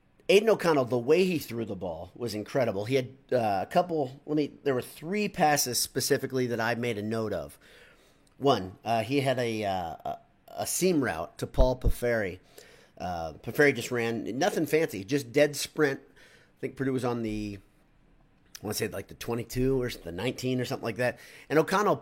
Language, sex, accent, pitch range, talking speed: English, male, American, 115-140 Hz, 195 wpm